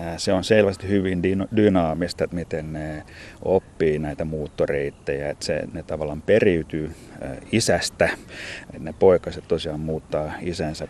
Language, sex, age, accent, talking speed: Finnish, male, 30-49, native, 120 wpm